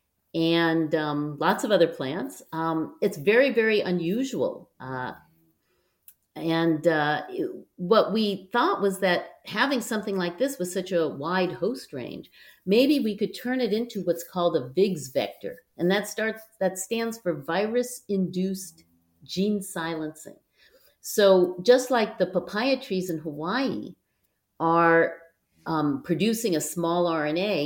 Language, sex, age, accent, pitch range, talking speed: English, female, 50-69, American, 160-220 Hz, 140 wpm